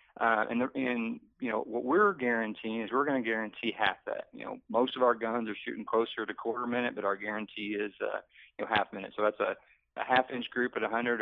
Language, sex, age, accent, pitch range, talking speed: English, male, 40-59, American, 110-130 Hz, 235 wpm